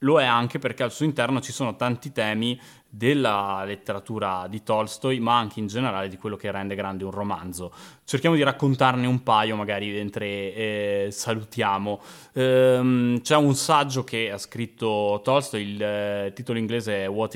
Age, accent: 20-39, native